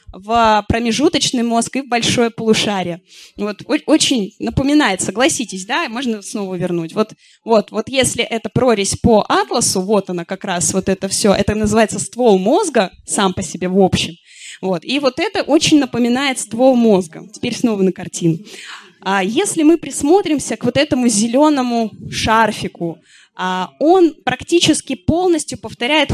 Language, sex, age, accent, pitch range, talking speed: Russian, female, 20-39, native, 200-280 Hz, 150 wpm